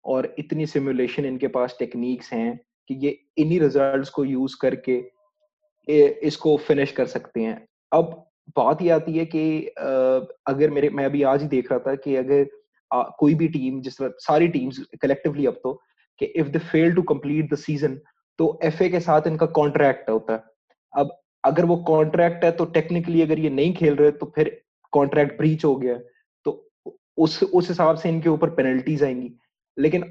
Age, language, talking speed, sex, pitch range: 20-39, English, 130 wpm, male, 135-170 Hz